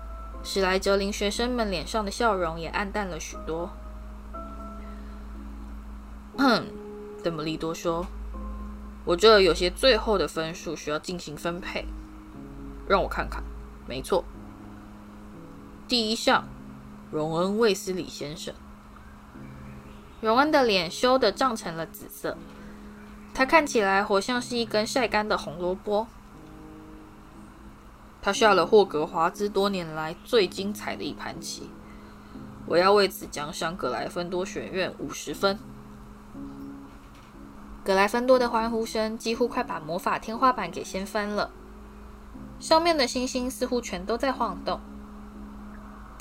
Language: Chinese